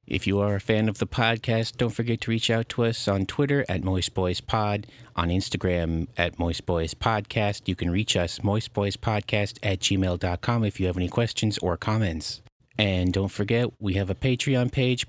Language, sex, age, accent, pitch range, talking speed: English, male, 30-49, American, 95-115 Hz, 190 wpm